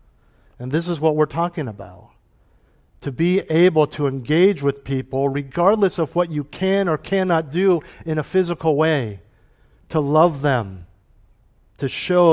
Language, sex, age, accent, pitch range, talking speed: English, male, 50-69, American, 120-165 Hz, 150 wpm